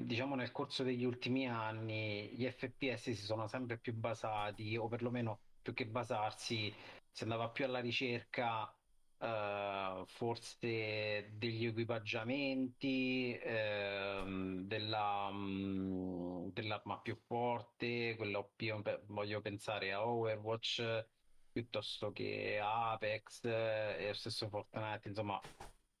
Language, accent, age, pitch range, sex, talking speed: Italian, native, 40-59, 105-125 Hz, male, 110 wpm